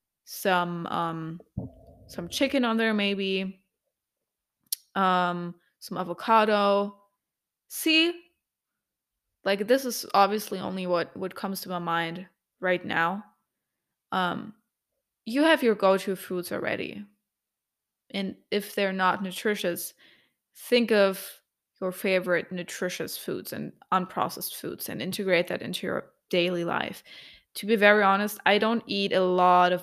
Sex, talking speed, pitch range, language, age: female, 125 wpm, 175-205 Hz, English, 20-39